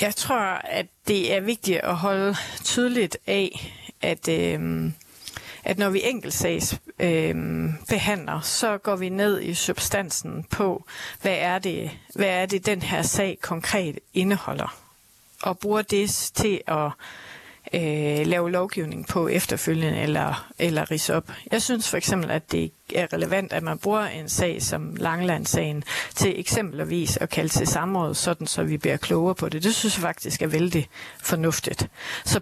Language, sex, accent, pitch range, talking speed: Danish, female, native, 160-205 Hz, 155 wpm